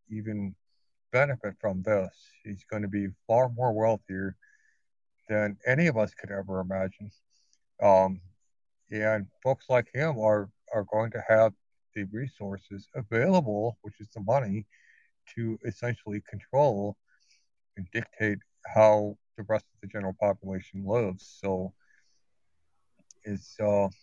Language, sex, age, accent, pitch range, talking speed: English, male, 60-79, American, 100-120 Hz, 125 wpm